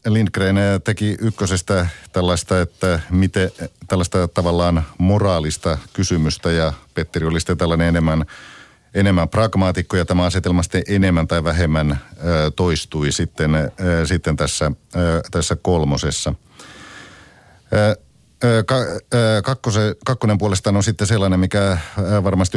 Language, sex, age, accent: Finnish, male, 50-69, native